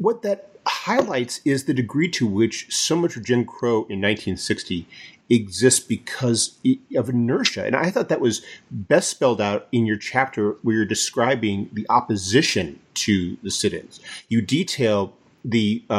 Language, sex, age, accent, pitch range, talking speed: English, male, 40-59, American, 105-130 Hz, 155 wpm